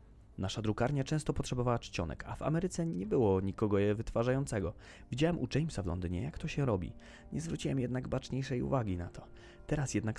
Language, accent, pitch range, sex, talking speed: Polish, native, 100-135 Hz, male, 185 wpm